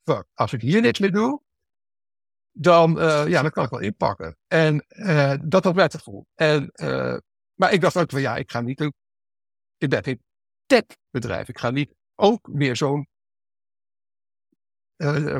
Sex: male